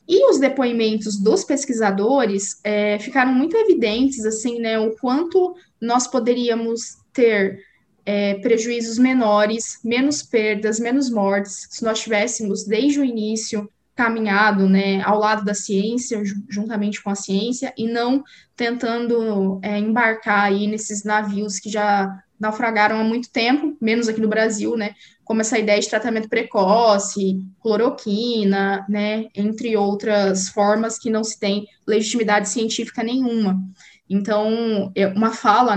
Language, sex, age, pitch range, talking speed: Portuguese, female, 20-39, 205-255 Hz, 125 wpm